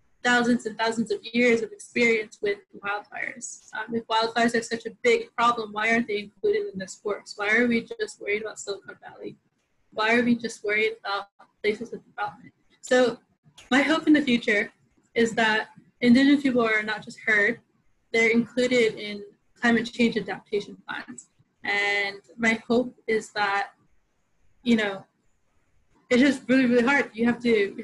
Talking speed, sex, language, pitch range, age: 170 wpm, female, English, 205-245 Hz, 20-39